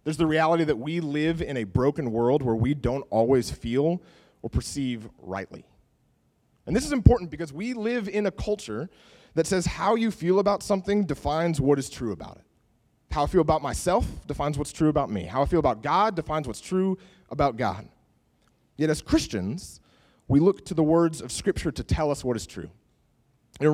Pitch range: 125-185 Hz